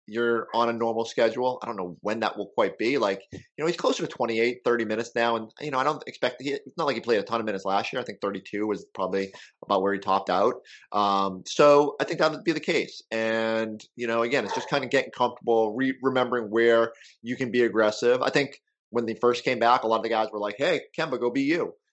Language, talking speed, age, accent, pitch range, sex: English, 260 wpm, 30-49, American, 105-125 Hz, male